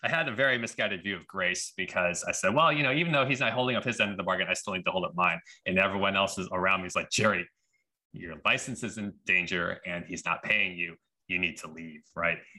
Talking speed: 265 wpm